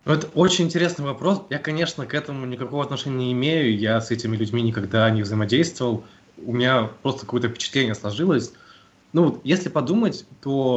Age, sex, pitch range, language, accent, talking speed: 20-39, male, 105-140 Hz, Russian, native, 165 wpm